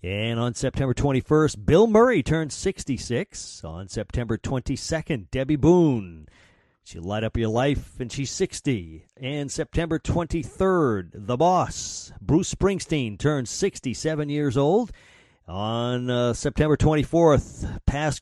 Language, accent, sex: English, American, male